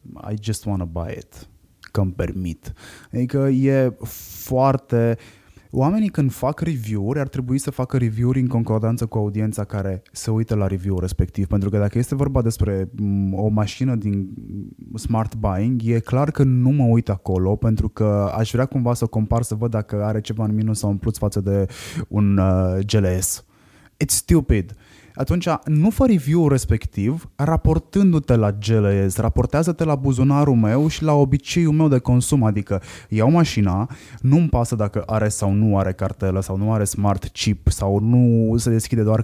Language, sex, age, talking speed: Romanian, male, 20-39, 170 wpm